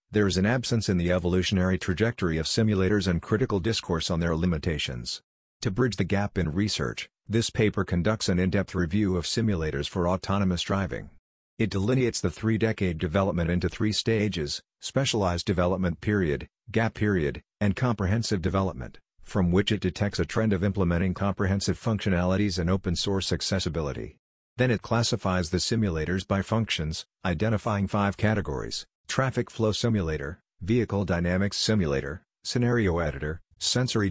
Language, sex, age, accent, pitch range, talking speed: English, male, 50-69, American, 90-105 Hz, 145 wpm